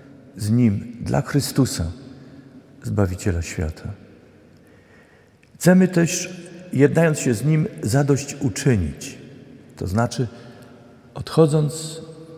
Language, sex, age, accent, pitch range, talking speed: Polish, male, 50-69, native, 110-140 Hz, 80 wpm